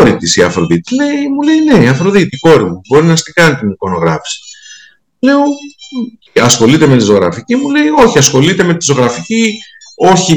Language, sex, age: Greek, male, 50-69